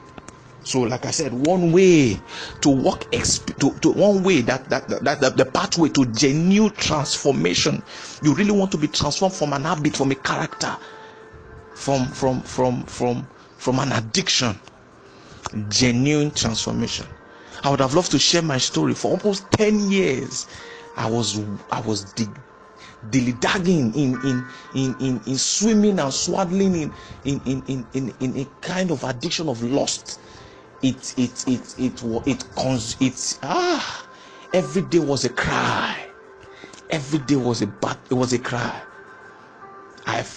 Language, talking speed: English, 155 wpm